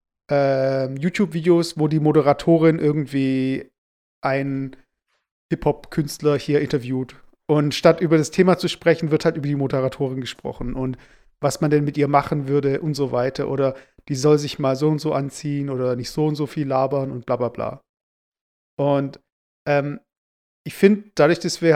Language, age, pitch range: German, 40-59, 140-170 Hz